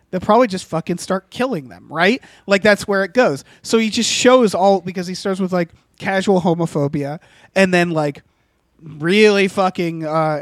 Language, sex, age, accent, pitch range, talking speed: English, male, 30-49, American, 160-200 Hz, 180 wpm